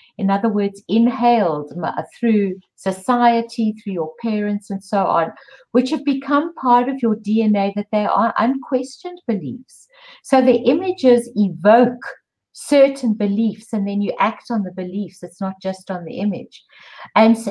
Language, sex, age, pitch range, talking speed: English, female, 60-79, 190-245 Hz, 150 wpm